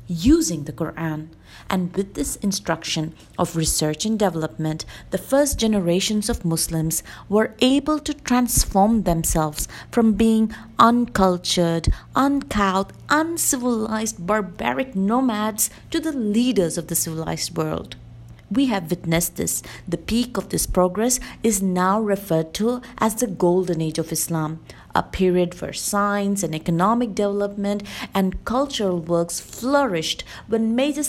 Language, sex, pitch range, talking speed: English, female, 175-225 Hz, 130 wpm